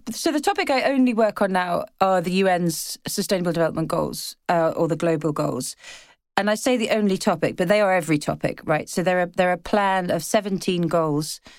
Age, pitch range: 30-49, 165-200 Hz